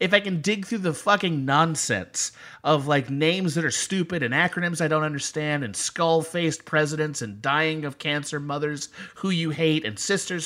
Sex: male